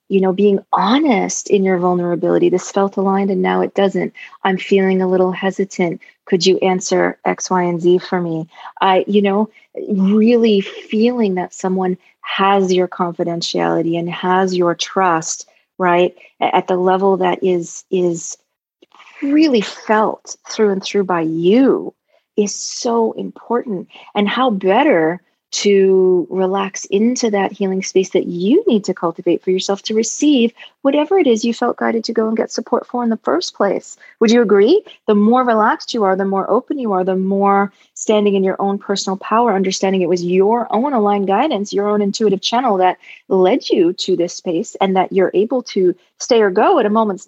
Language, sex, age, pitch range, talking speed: English, female, 30-49, 185-225 Hz, 180 wpm